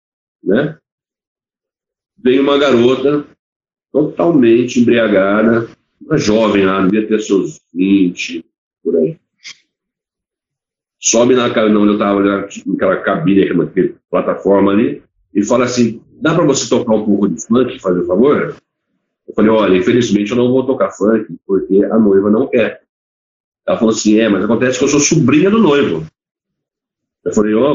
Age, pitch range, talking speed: 50-69, 100-135 Hz, 155 wpm